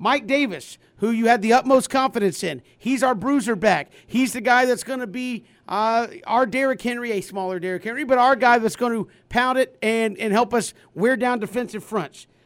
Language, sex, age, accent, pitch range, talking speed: English, male, 50-69, American, 210-255 Hz, 210 wpm